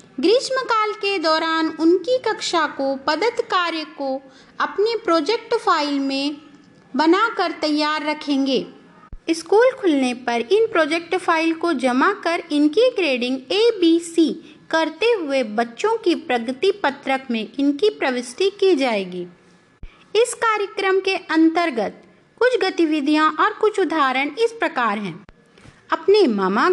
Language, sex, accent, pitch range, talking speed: Hindi, female, native, 280-415 Hz, 125 wpm